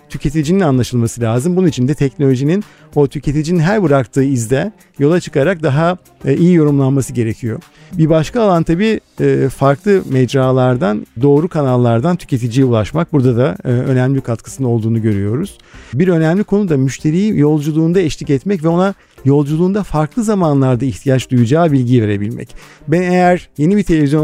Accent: native